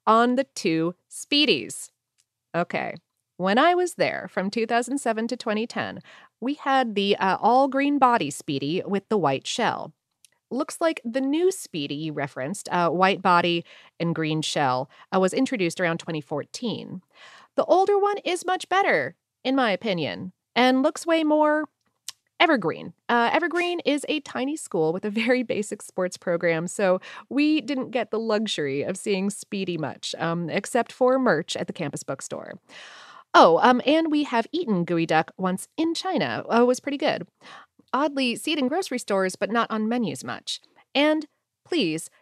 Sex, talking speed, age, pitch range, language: female, 165 wpm, 30-49, 180-270 Hz, English